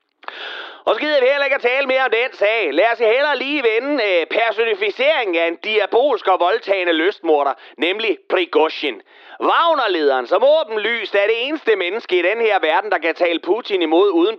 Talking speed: 185 wpm